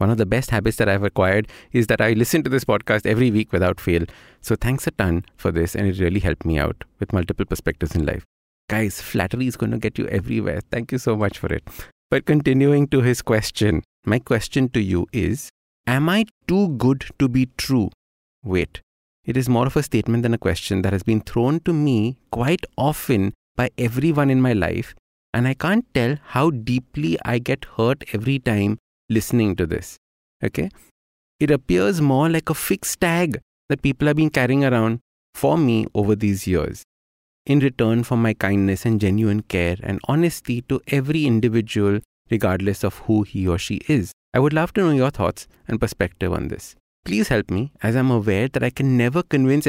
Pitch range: 100-130 Hz